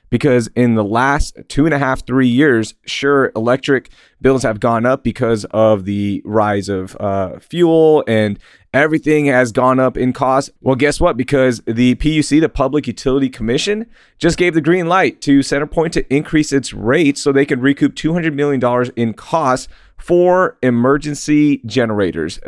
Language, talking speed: English, 165 wpm